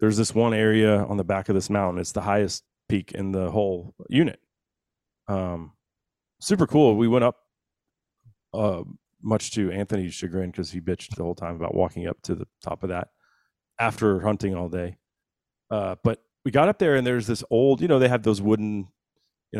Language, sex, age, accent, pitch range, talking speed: English, male, 30-49, American, 95-115 Hz, 195 wpm